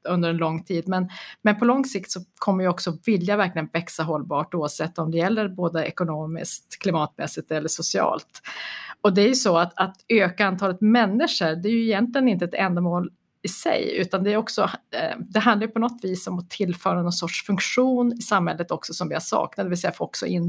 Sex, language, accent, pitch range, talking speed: female, Swedish, native, 175-220 Hz, 215 wpm